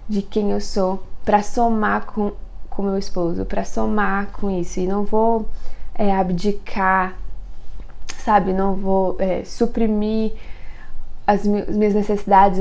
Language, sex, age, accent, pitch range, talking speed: Portuguese, female, 20-39, Brazilian, 185-215 Hz, 140 wpm